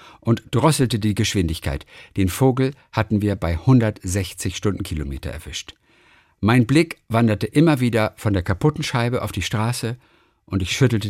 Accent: German